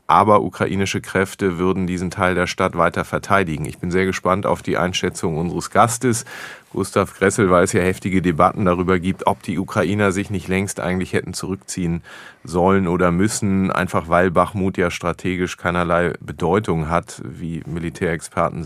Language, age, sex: German, 30-49, male